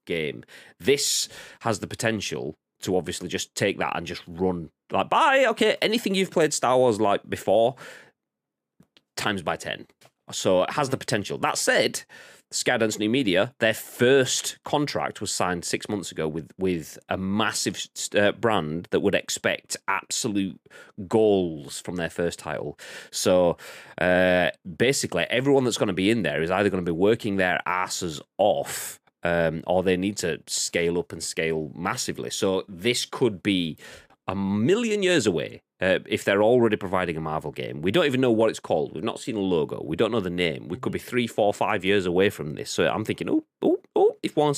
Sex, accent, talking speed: male, British, 185 wpm